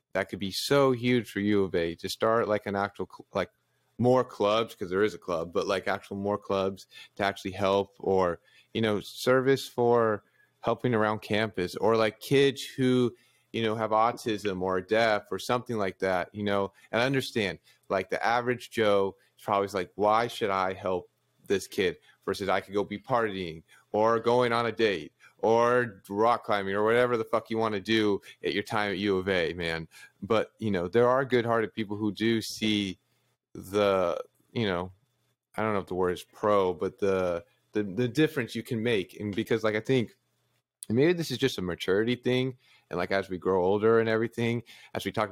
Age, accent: 30-49, American